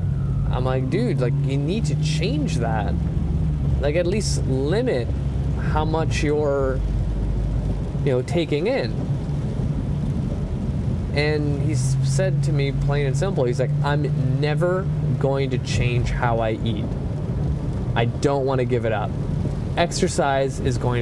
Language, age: English, 20-39